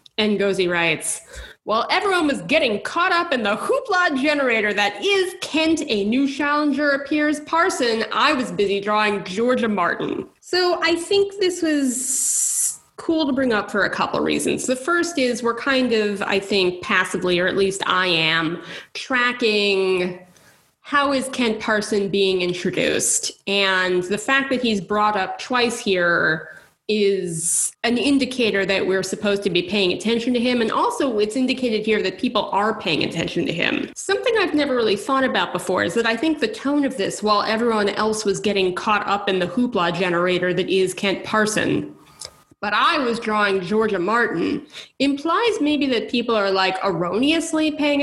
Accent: American